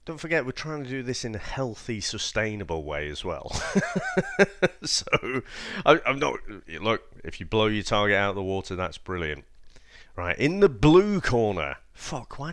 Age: 30-49